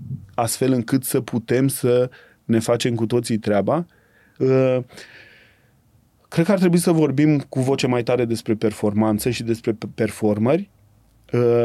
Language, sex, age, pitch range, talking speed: Romanian, male, 30-49, 110-125 Hz, 130 wpm